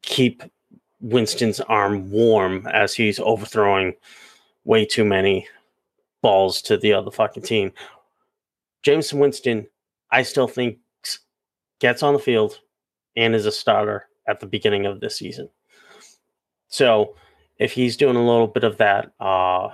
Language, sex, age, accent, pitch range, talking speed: English, male, 30-49, American, 100-120 Hz, 135 wpm